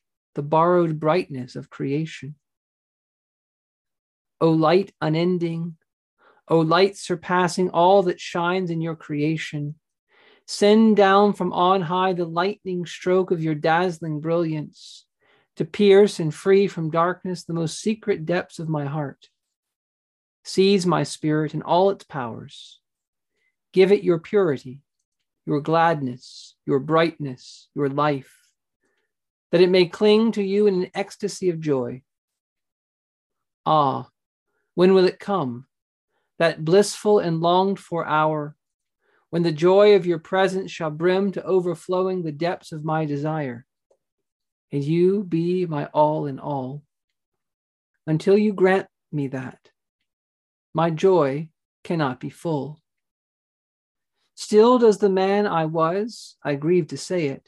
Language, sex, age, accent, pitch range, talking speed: English, male, 40-59, American, 150-190 Hz, 130 wpm